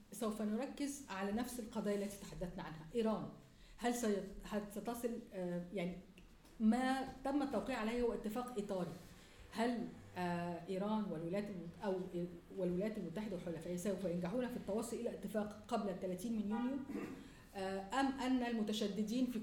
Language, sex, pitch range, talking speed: English, female, 190-235 Hz, 125 wpm